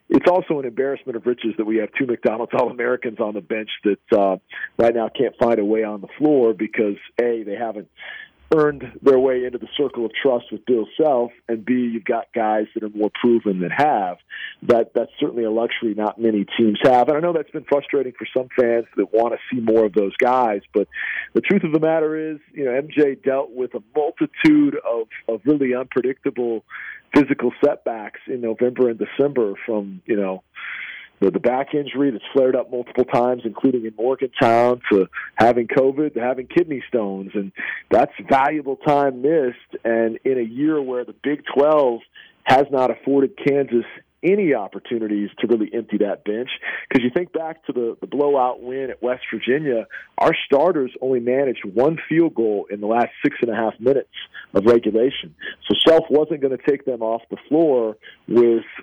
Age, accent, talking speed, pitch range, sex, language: 50-69, American, 190 wpm, 115-140 Hz, male, English